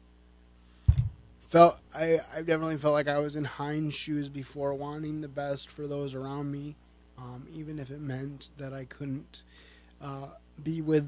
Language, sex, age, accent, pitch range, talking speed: English, male, 20-39, American, 125-150 Hz, 165 wpm